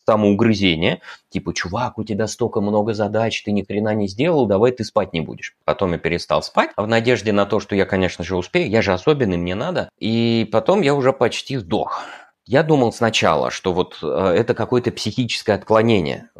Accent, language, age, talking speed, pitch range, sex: native, Russian, 20-39, 185 wpm, 100-135 Hz, male